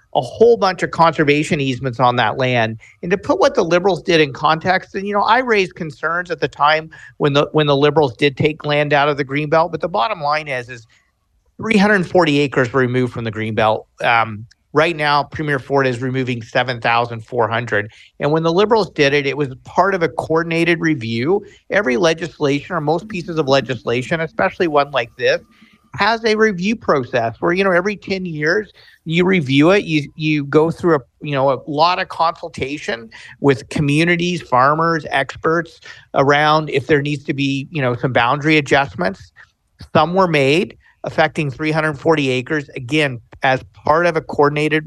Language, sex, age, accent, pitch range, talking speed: English, male, 50-69, American, 135-170 Hz, 185 wpm